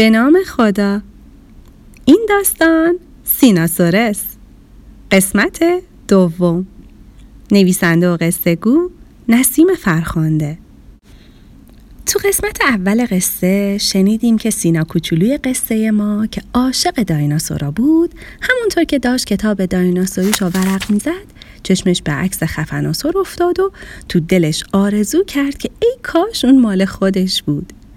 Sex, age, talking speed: female, 30-49, 115 wpm